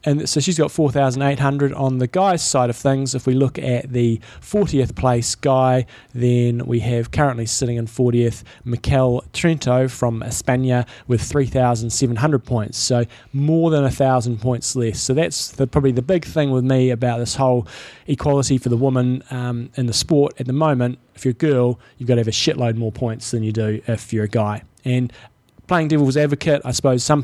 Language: English